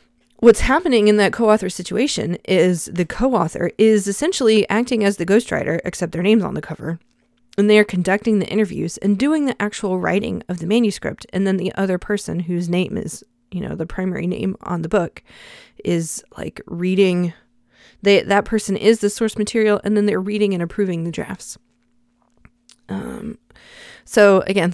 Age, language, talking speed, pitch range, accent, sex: 20-39, English, 175 wpm, 185-230 Hz, American, female